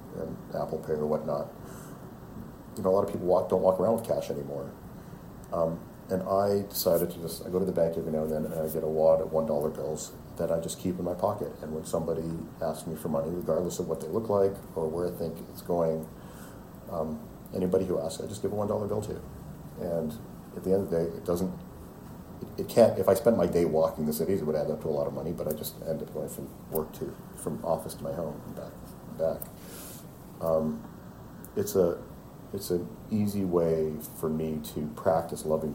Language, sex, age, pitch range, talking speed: English, male, 40-59, 80-90 Hz, 230 wpm